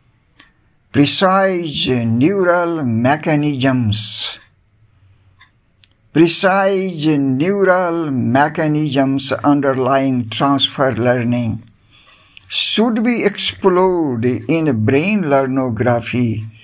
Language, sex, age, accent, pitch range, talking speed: English, male, 60-79, Indian, 115-170 Hz, 55 wpm